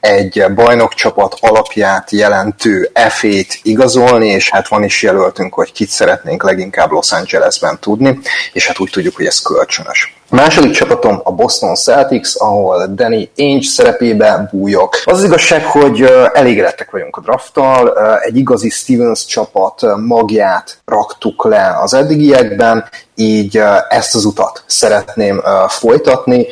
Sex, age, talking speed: male, 30-49, 130 wpm